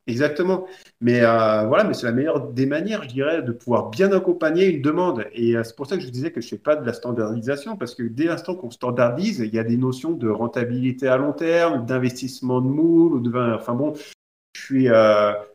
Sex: male